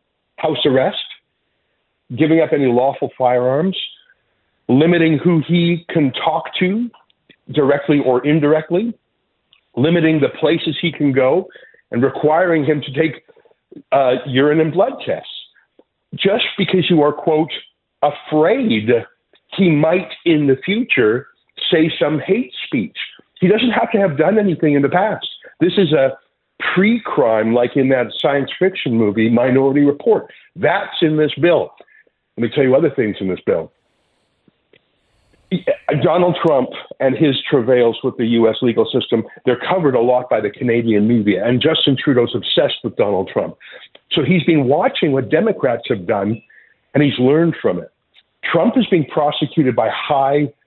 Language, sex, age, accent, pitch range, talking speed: English, male, 50-69, American, 130-175 Hz, 150 wpm